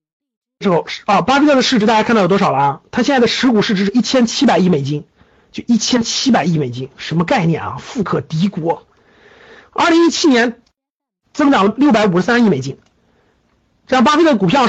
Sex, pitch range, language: male, 200-275 Hz, Chinese